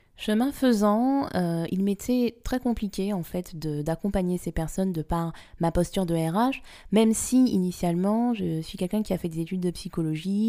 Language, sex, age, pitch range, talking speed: French, female, 20-39, 160-200 Hz, 185 wpm